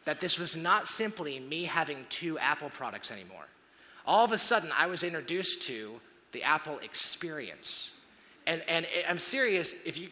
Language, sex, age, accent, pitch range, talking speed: English, male, 30-49, American, 175-225 Hz, 165 wpm